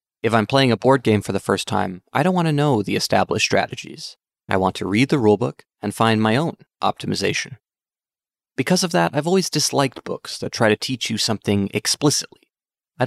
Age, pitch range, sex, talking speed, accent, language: 20-39, 105-135 Hz, male, 200 wpm, American, English